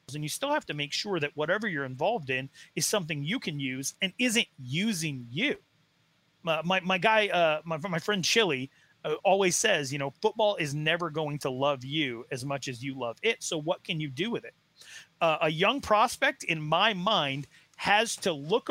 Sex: male